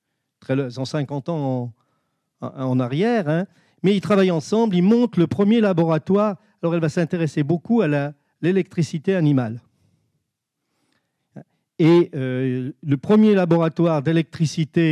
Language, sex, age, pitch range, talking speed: French, male, 50-69, 130-175 Hz, 120 wpm